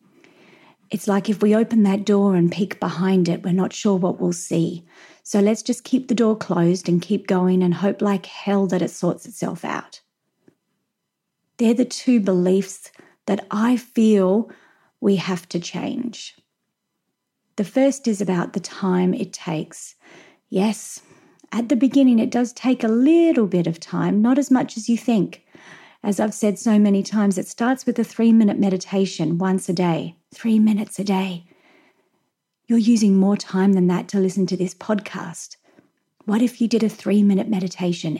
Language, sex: English, female